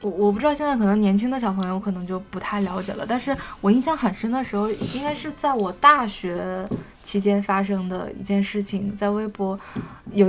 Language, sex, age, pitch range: Chinese, female, 20-39, 195-225 Hz